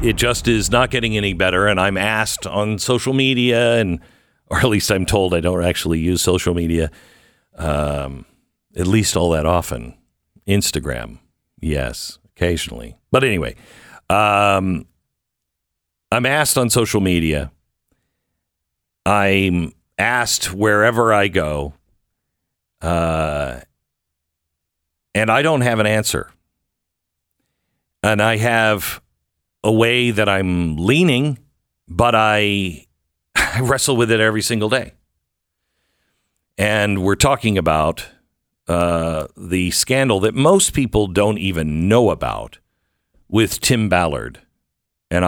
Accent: American